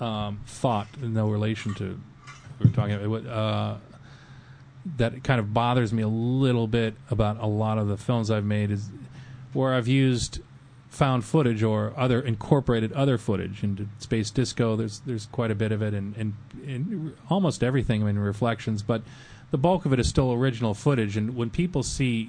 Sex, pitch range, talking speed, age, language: male, 100-125 Hz, 190 wpm, 30-49, English